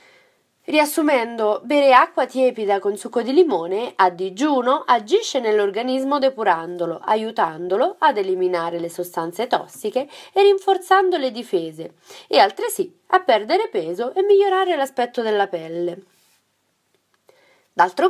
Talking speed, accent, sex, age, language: 115 wpm, native, female, 30-49, Italian